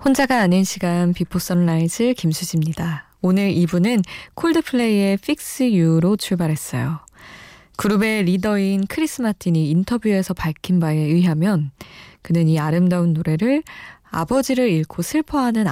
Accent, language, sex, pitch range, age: native, Korean, female, 160-205 Hz, 20-39